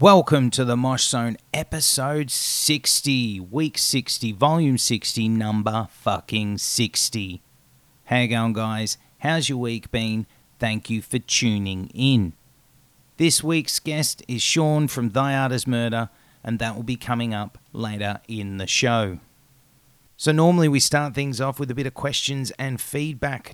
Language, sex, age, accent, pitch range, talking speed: English, male, 30-49, Australian, 115-140 Hz, 155 wpm